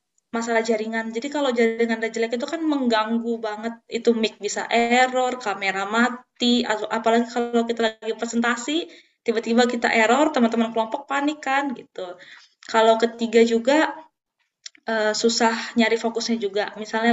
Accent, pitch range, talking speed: native, 210-245 Hz, 140 wpm